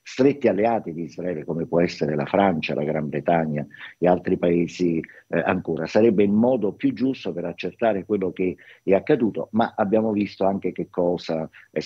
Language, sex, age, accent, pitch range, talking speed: Italian, male, 50-69, native, 85-105 Hz, 175 wpm